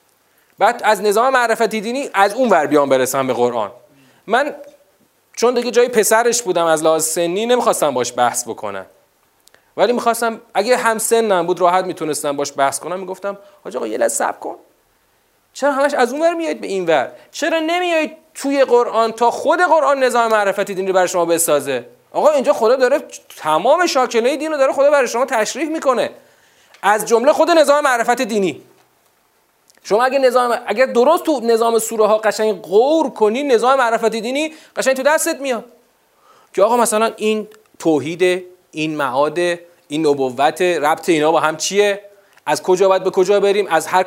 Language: Persian